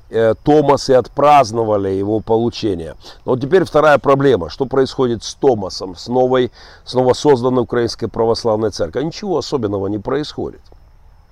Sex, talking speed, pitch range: male, 125 wpm, 110-150 Hz